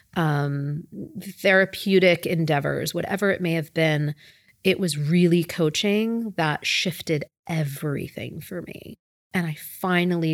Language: English